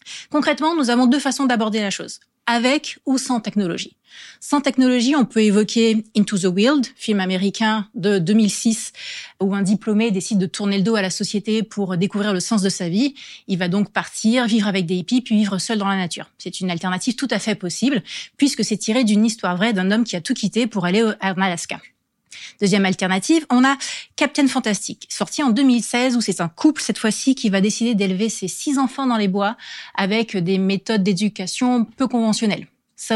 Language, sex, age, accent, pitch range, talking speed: French, female, 30-49, French, 195-245 Hz, 205 wpm